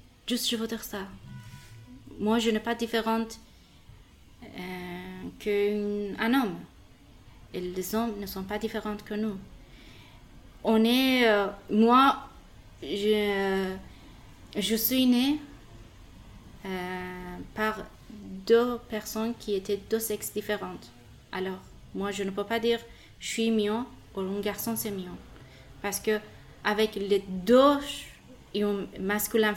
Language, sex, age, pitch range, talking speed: French, female, 30-49, 195-225 Hz, 125 wpm